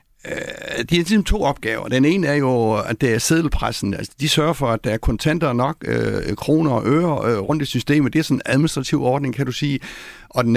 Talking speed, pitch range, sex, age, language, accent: 215 wpm, 115-145 Hz, male, 60-79, Danish, native